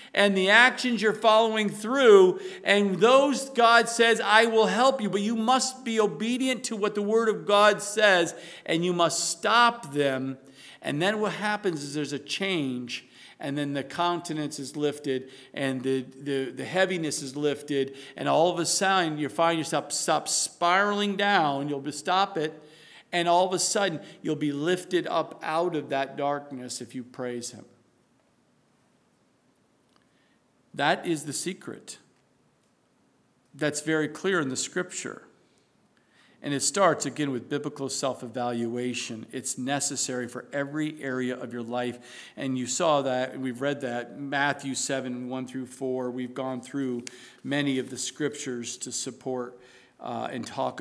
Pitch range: 135-190 Hz